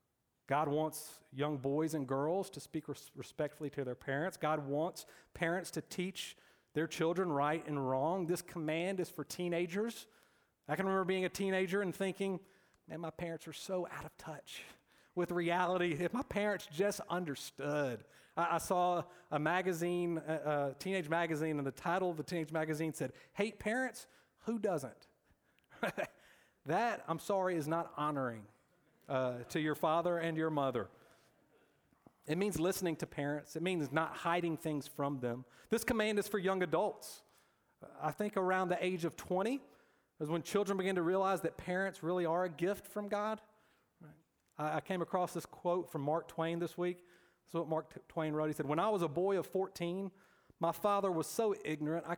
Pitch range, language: 155-185 Hz, English